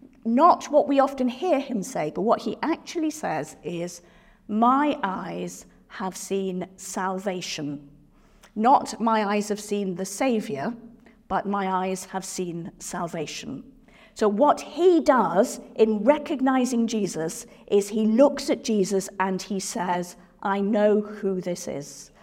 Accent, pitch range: British, 190-255 Hz